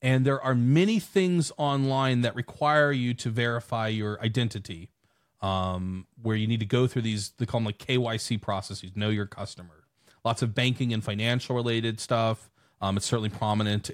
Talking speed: 170 wpm